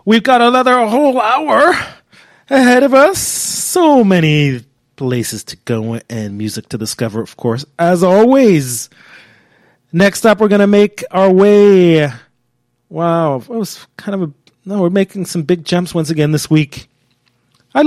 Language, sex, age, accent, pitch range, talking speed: English, male, 30-49, American, 120-180 Hz, 150 wpm